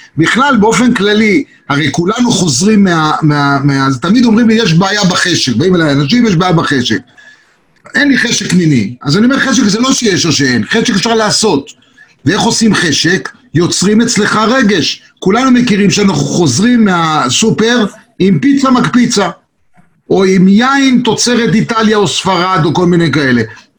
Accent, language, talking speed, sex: native, Hebrew, 150 wpm, male